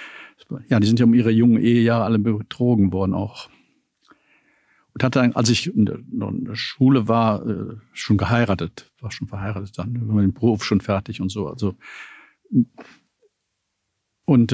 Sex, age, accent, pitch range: male, 50-69, German, 110-130 Hz